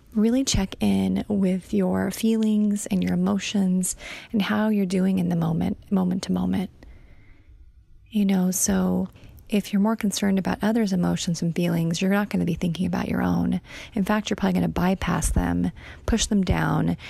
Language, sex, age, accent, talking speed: English, female, 30-49, American, 180 wpm